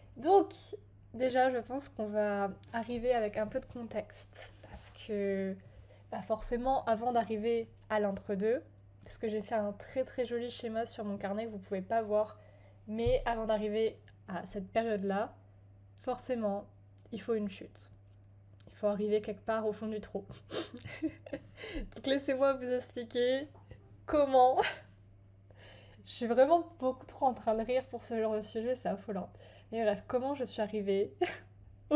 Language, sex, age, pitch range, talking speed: French, female, 10-29, 175-240 Hz, 160 wpm